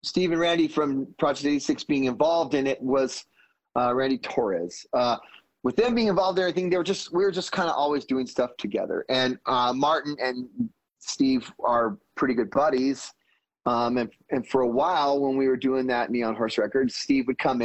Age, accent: 30-49, American